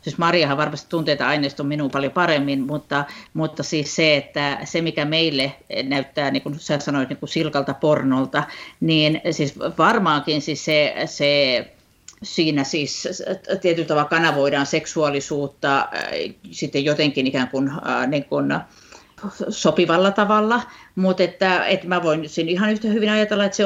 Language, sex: Finnish, female